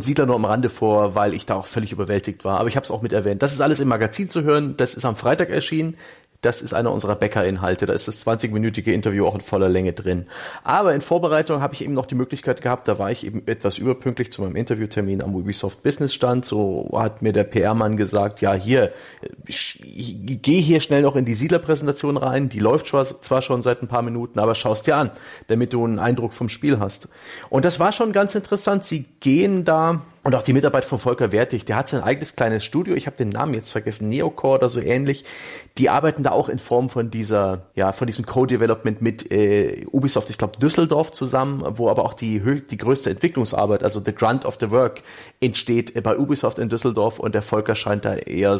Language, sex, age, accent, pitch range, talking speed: German, male, 40-59, German, 105-140 Hz, 225 wpm